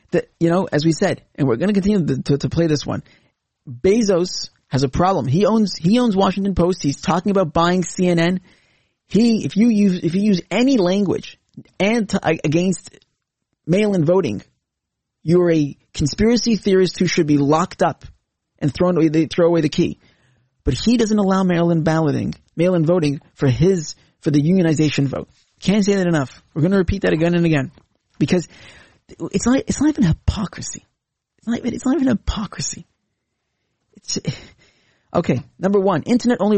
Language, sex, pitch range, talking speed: English, male, 155-200 Hz, 175 wpm